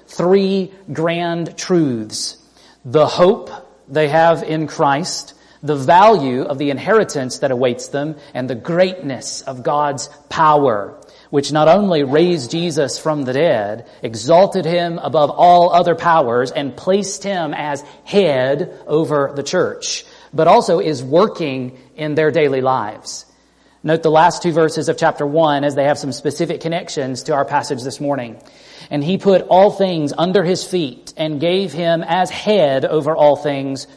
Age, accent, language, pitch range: 40-59, American, English, 145-180 Hz